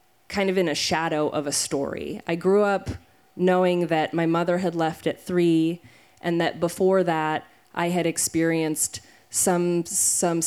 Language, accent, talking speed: English, American, 160 wpm